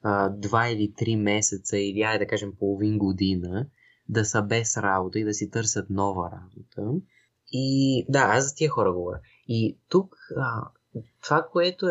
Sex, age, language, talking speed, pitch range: male, 20-39, Bulgarian, 165 wpm, 105-140 Hz